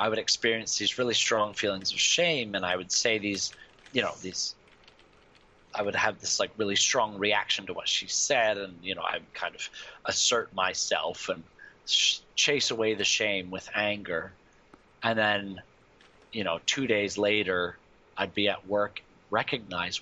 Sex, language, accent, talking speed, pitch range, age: male, English, American, 170 wpm, 100-110 Hz, 30-49